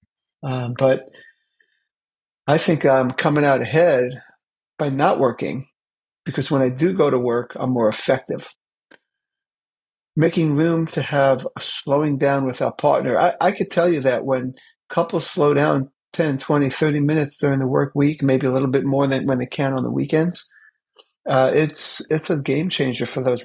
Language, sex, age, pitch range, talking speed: English, male, 40-59, 135-165 Hz, 175 wpm